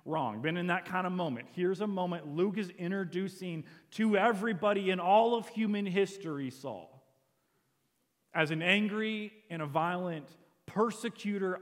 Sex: male